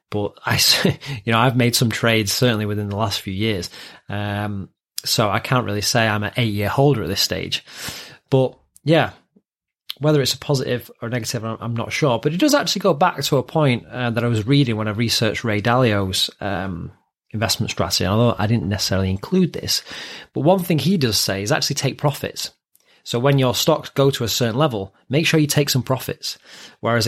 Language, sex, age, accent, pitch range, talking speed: English, male, 30-49, British, 110-140 Hz, 205 wpm